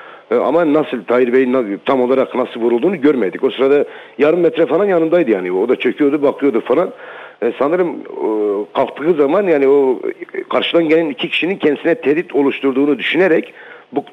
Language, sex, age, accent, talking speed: Turkish, male, 60-79, native, 150 wpm